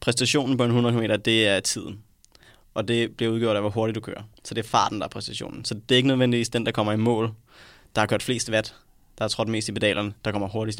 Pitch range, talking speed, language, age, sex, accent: 105-120 Hz, 265 wpm, Danish, 20-39, male, native